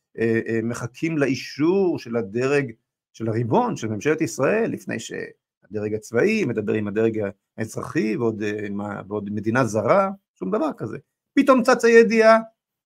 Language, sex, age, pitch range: Hebrew, male, 50-69, 115-190 Hz